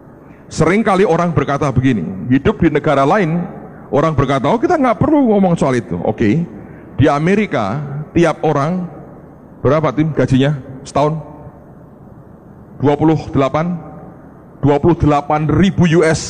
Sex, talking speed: male, 110 wpm